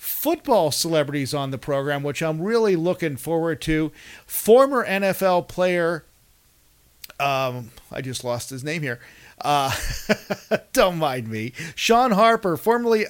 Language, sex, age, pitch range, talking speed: English, male, 50-69, 145-180 Hz, 130 wpm